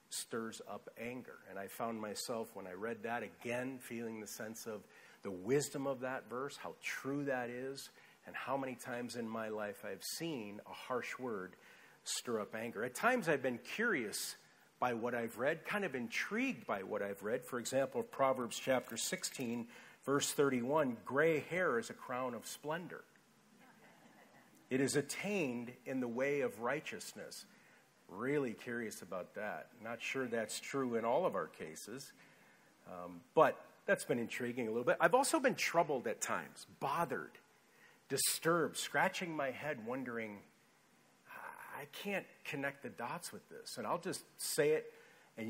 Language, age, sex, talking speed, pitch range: English, 50-69, male, 165 wpm, 120-175 Hz